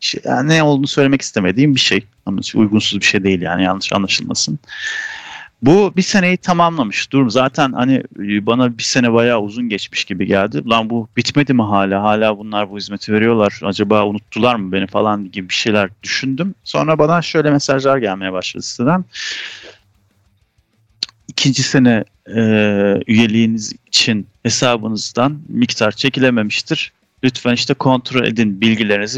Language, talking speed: Turkish, 145 wpm